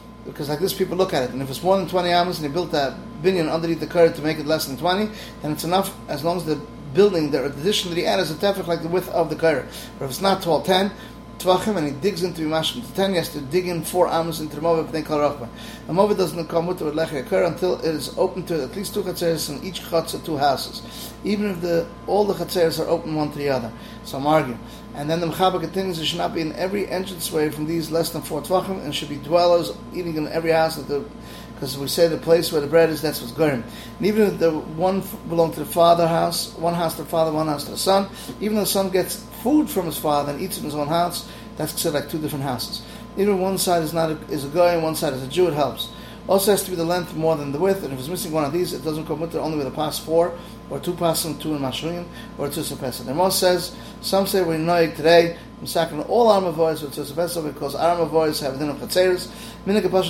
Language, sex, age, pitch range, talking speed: English, male, 30-49, 155-180 Hz, 260 wpm